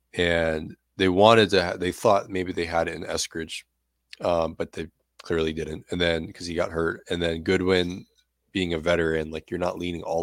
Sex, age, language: male, 20-39, English